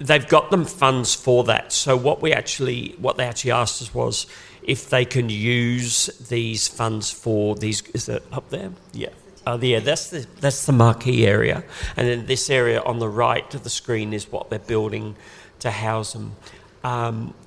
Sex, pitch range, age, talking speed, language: male, 110-130 Hz, 50-69, 190 wpm, English